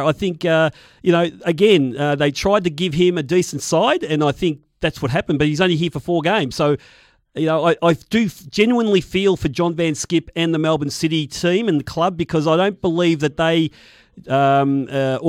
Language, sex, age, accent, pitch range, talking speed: English, male, 40-59, Australian, 135-165 Hz, 220 wpm